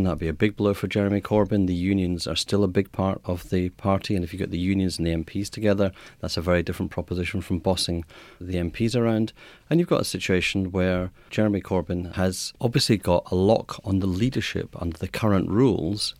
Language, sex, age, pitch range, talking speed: English, male, 40-59, 90-110 Hz, 215 wpm